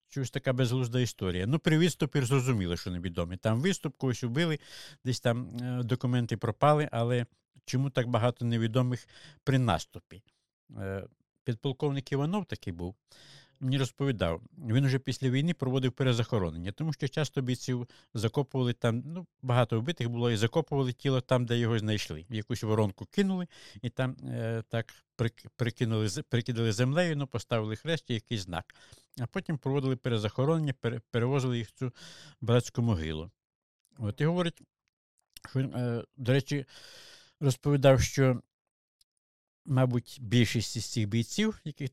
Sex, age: male, 60-79